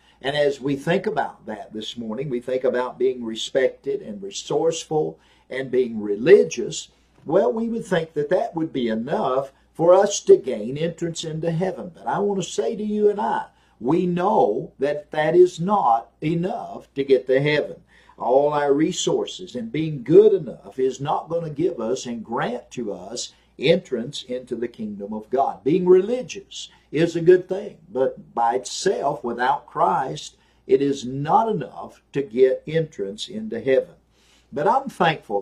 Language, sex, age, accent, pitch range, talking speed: English, male, 50-69, American, 130-190 Hz, 170 wpm